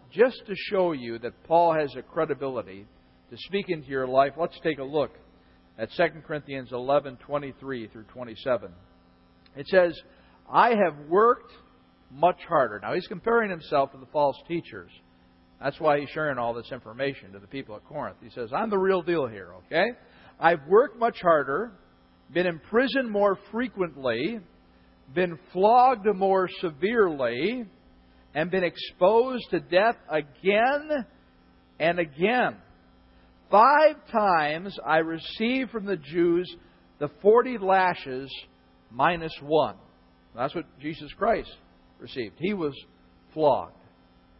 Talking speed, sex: 135 wpm, male